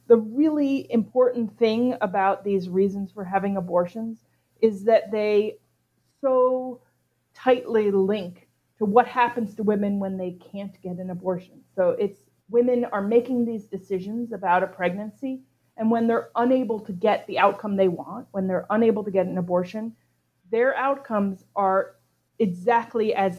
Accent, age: American, 30-49